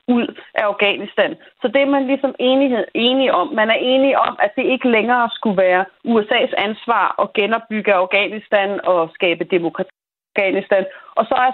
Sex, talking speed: female, 170 wpm